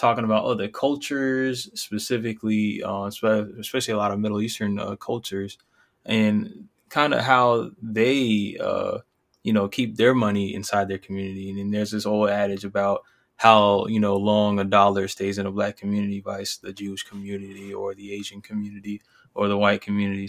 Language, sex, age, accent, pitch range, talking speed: English, male, 20-39, American, 100-110 Hz, 170 wpm